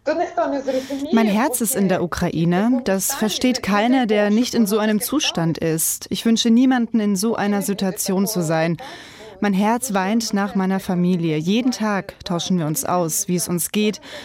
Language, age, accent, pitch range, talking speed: German, 20-39, German, 185-225 Hz, 175 wpm